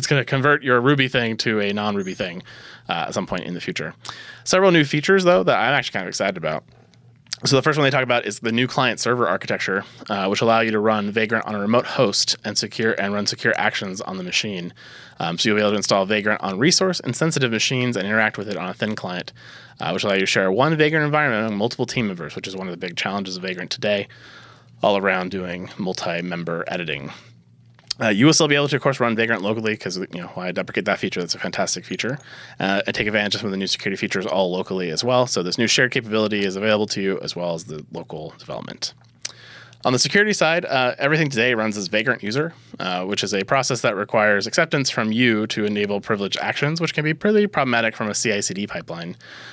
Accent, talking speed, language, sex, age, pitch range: American, 240 wpm, English, male, 20-39, 100-145 Hz